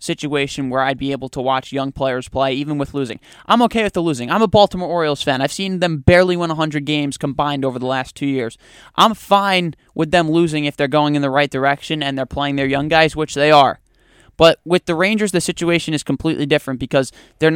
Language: English